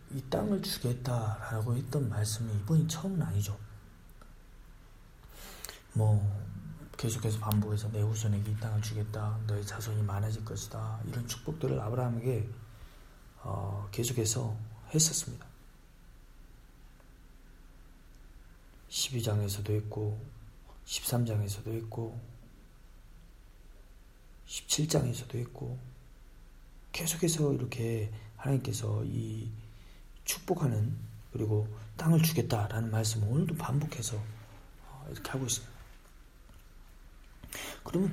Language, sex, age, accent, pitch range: Korean, male, 40-59, native, 105-130 Hz